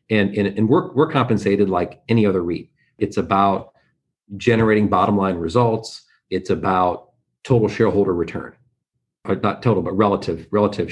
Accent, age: American, 40-59